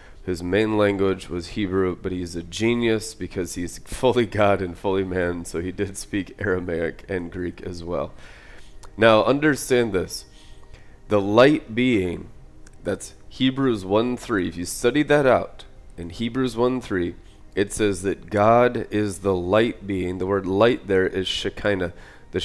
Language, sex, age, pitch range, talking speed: English, male, 30-49, 95-120 Hz, 150 wpm